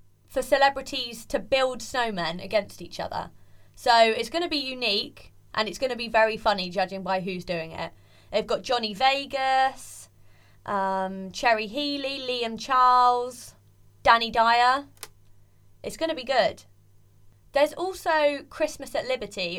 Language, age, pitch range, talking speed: English, 20-39, 185-255 Hz, 145 wpm